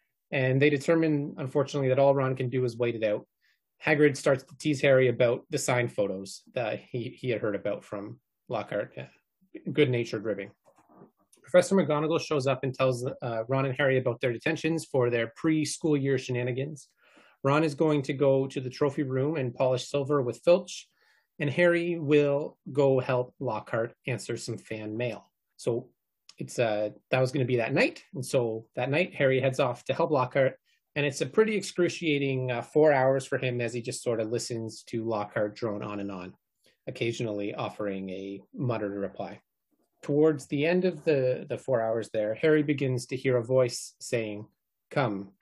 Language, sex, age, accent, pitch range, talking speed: English, male, 30-49, American, 120-150 Hz, 185 wpm